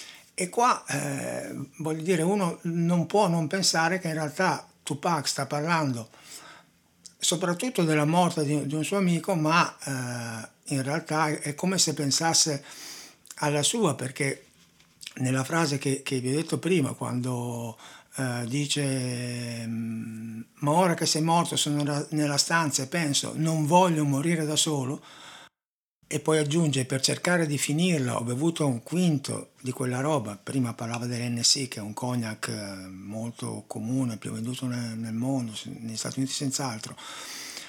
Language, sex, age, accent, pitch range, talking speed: Italian, male, 60-79, native, 125-160 Hz, 145 wpm